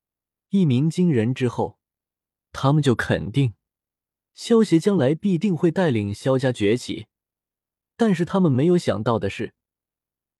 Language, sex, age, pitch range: Chinese, male, 20-39, 115-165 Hz